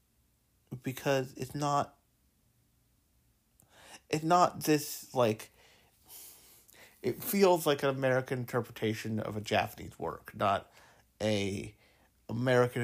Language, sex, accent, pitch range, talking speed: English, male, American, 105-135 Hz, 95 wpm